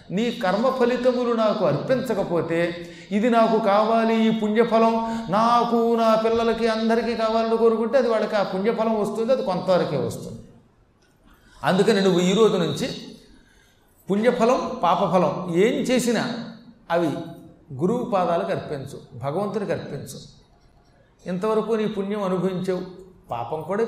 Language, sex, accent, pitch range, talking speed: Telugu, male, native, 165-225 Hz, 110 wpm